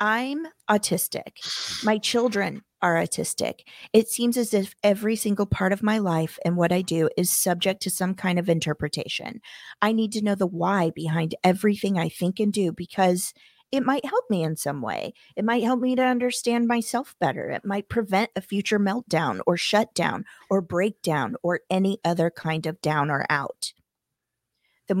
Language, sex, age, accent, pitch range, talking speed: English, female, 40-59, American, 165-210 Hz, 180 wpm